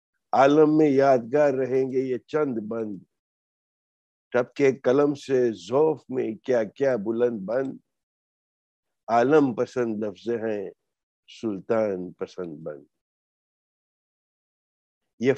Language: English